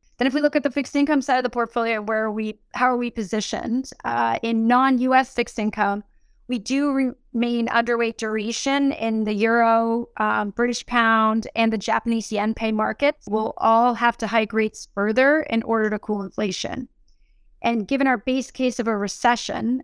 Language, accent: English, American